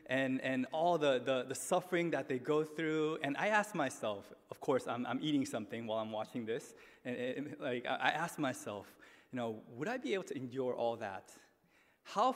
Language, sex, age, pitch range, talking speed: English, male, 20-39, 125-160 Hz, 205 wpm